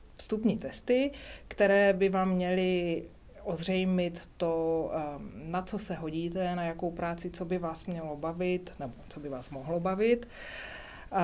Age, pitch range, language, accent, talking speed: 40-59, 160-195 Hz, Czech, native, 140 wpm